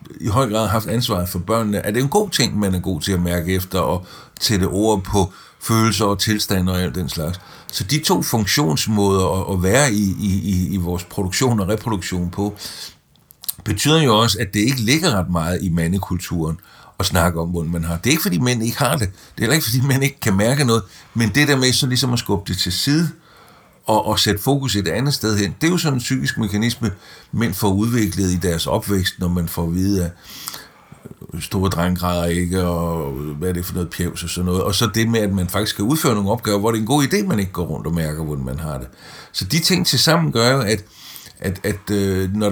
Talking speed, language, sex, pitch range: 235 wpm, Danish, male, 90-120 Hz